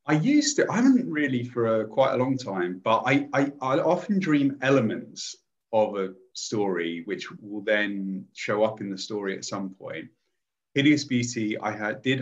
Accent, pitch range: British, 95-125 Hz